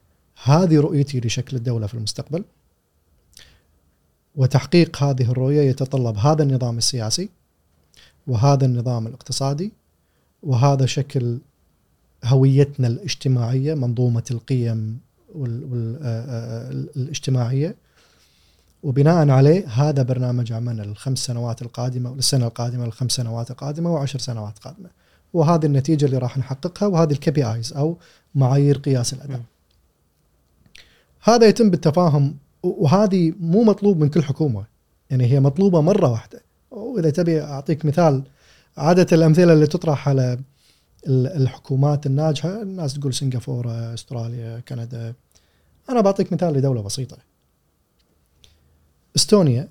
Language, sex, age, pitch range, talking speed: Arabic, male, 30-49, 120-155 Hz, 105 wpm